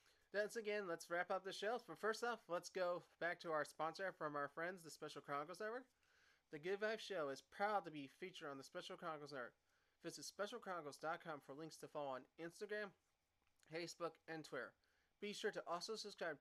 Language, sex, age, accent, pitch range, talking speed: English, male, 30-49, American, 150-185 Hz, 195 wpm